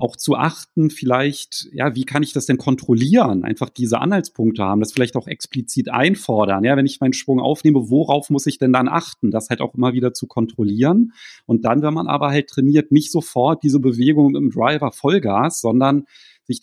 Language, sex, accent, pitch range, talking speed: German, male, German, 115-145 Hz, 200 wpm